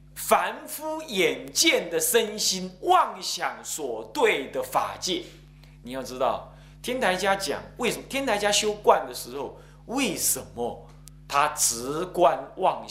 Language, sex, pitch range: Chinese, male, 150-235 Hz